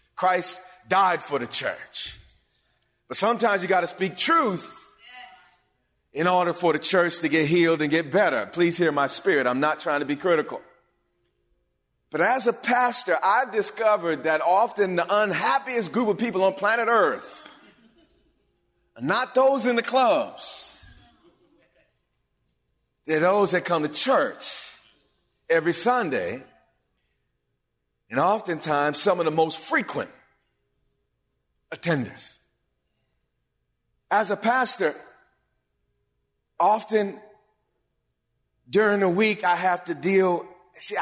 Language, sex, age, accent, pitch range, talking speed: English, male, 40-59, American, 165-210 Hz, 120 wpm